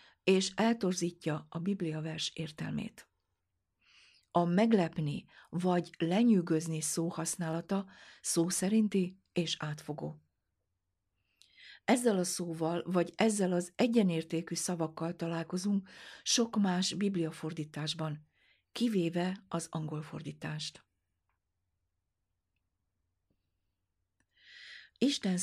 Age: 50-69